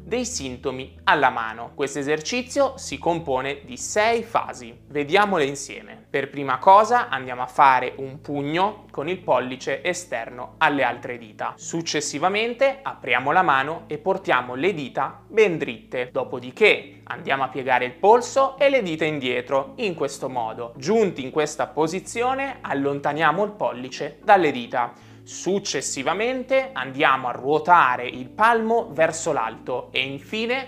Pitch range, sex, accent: 135-220 Hz, male, native